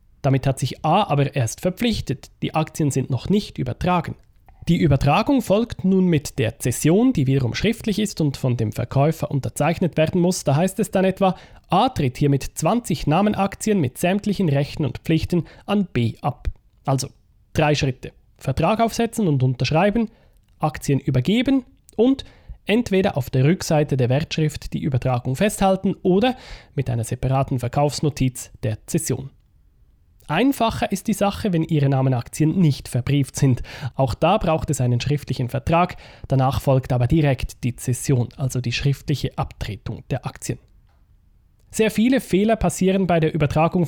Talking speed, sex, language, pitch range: 150 wpm, male, German, 130-175 Hz